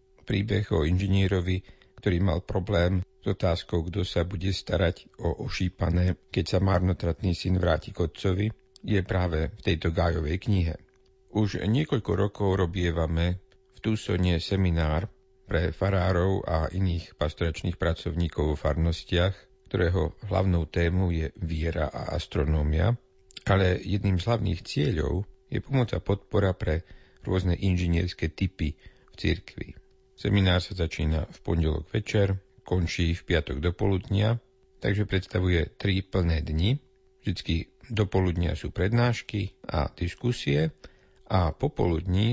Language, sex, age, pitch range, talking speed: Slovak, male, 50-69, 85-100 Hz, 125 wpm